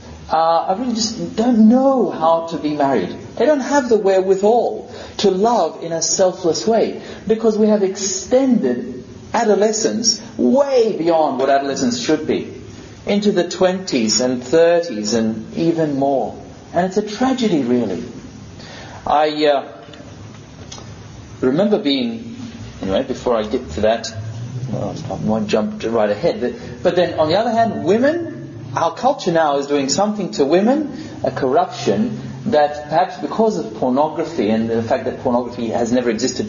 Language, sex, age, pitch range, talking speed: English, male, 40-59, 125-200 Hz, 150 wpm